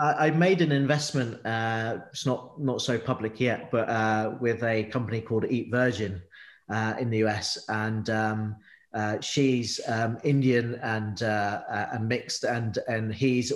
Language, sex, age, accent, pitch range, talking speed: English, male, 30-49, British, 110-135 Hz, 160 wpm